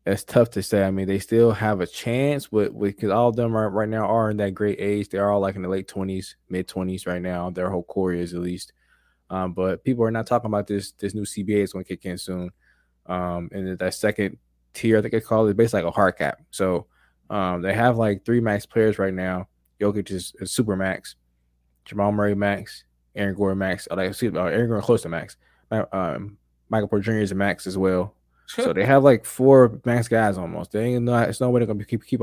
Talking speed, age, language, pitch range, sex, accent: 245 wpm, 20-39, English, 90-110 Hz, male, American